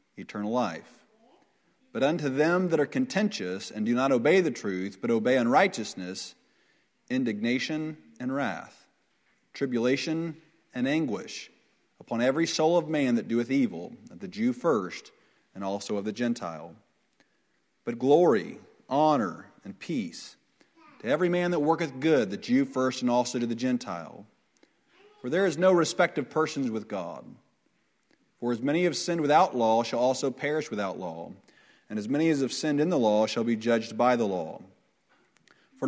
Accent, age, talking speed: American, 40-59, 160 wpm